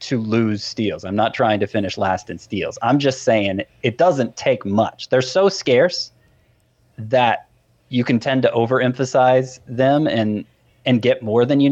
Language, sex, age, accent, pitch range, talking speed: English, male, 30-49, American, 100-130 Hz, 175 wpm